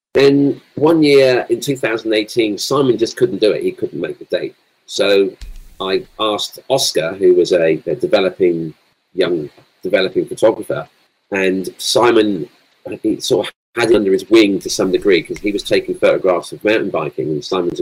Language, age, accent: English, 40-59, British